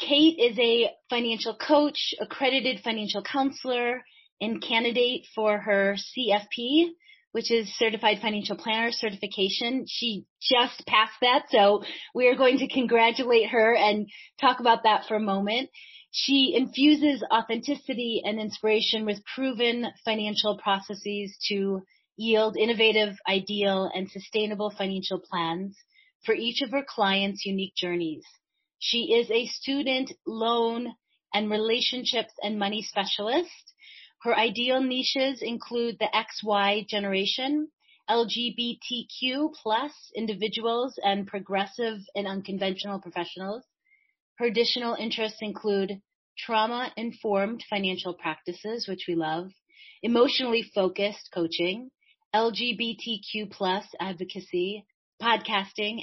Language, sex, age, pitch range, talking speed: English, female, 30-49, 200-250 Hz, 110 wpm